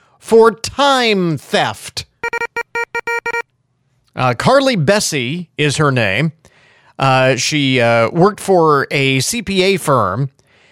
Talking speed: 95 wpm